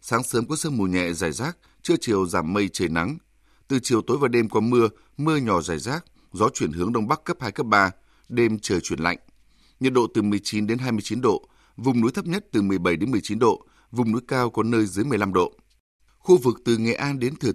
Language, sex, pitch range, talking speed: Vietnamese, male, 105-130 Hz, 235 wpm